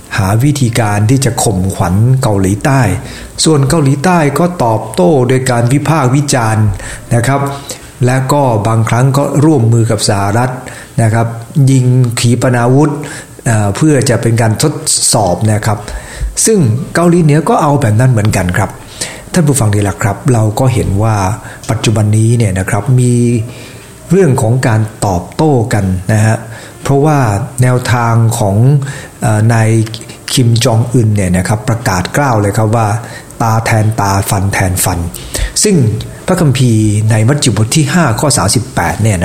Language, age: English, 60-79